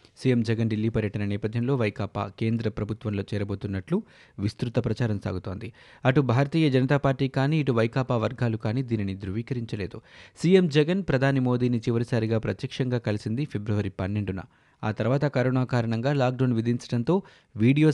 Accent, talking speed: native, 130 wpm